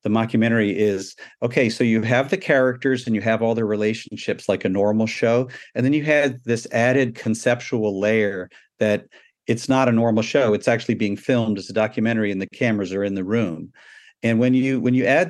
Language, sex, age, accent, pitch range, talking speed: English, male, 50-69, American, 100-125 Hz, 205 wpm